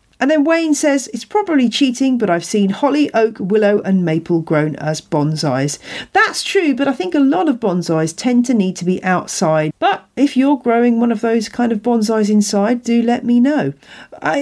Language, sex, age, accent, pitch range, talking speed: English, female, 40-59, British, 175-270 Hz, 205 wpm